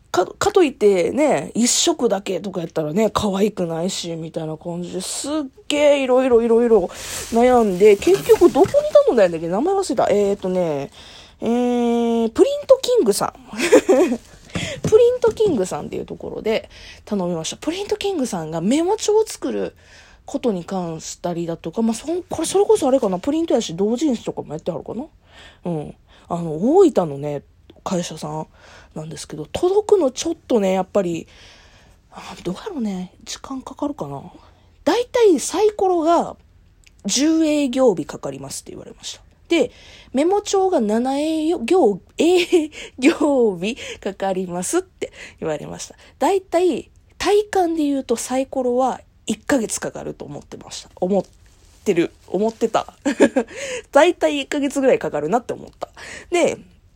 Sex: female